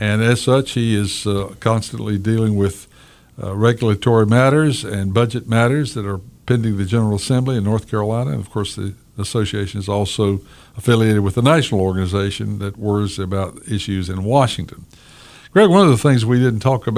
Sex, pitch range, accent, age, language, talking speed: male, 100-125 Hz, American, 60-79, English, 175 wpm